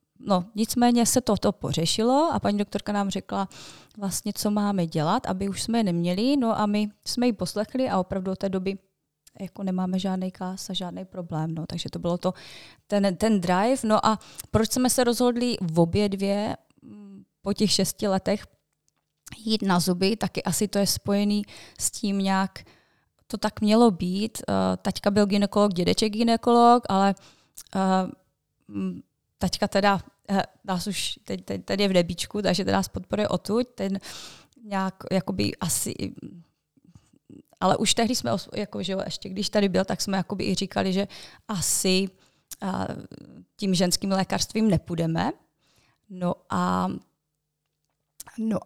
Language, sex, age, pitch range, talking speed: Slovak, female, 20-39, 175-210 Hz, 150 wpm